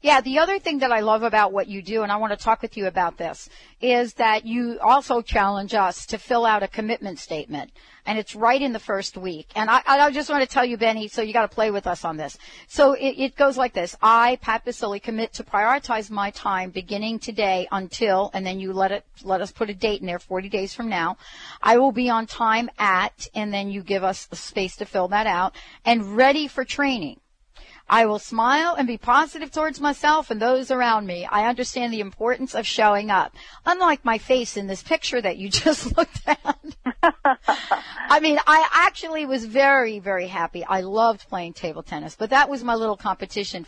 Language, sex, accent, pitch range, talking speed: English, female, American, 195-255 Hz, 220 wpm